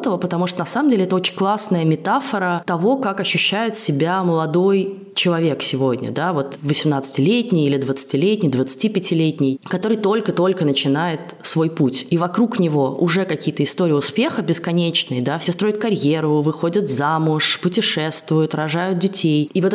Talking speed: 140 wpm